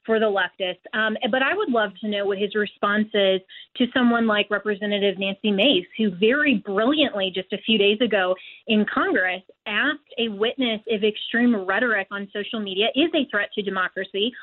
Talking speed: 185 wpm